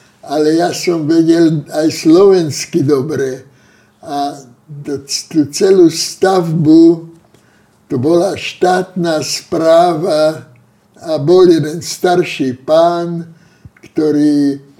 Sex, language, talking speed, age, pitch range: male, Slovak, 85 wpm, 60-79, 155-185 Hz